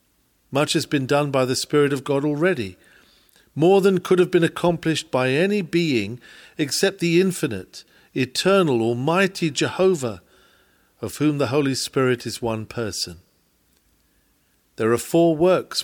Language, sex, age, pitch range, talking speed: English, male, 50-69, 130-180 Hz, 140 wpm